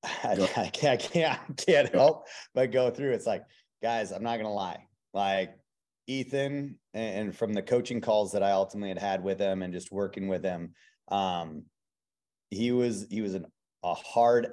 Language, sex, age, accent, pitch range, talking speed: English, male, 30-49, American, 95-105 Hz, 175 wpm